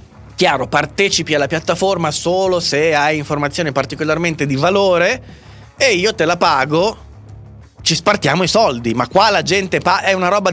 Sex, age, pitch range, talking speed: male, 20-39, 125-180 Hz, 160 wpm